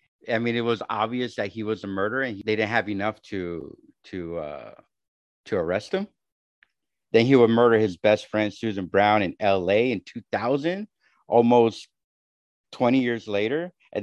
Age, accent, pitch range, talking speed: 50-69, American, 105-125 Hz, 165 wpm